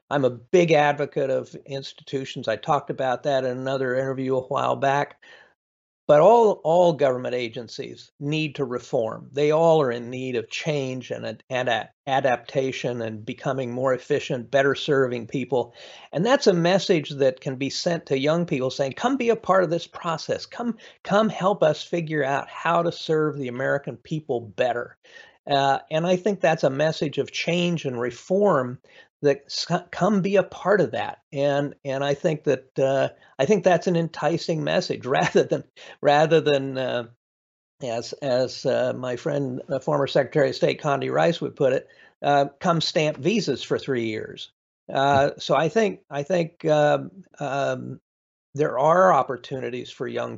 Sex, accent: male, American